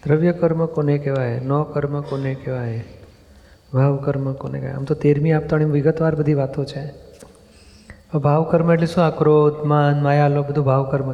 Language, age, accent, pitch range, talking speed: Gujarati, 30-49, native, 135-150 Hz, 155 wpm